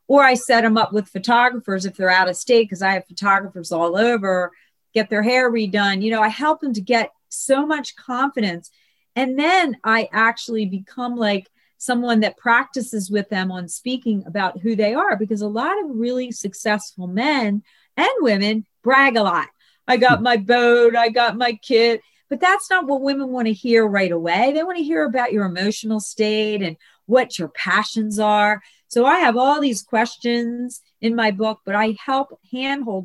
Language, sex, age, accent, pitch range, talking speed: English, female, 40-59, American, 200-245 Hz, 190 wpm